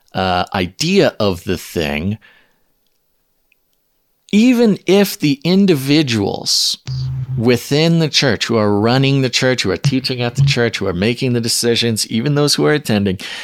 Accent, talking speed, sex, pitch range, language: American, 145 wpm, male, 95-130 Hz, English